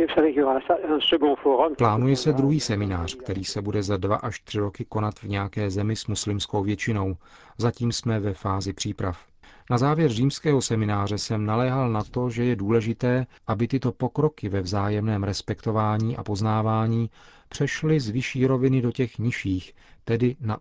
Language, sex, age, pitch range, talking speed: Czech, male, 40-59, 105-125 Hz, 150 wpm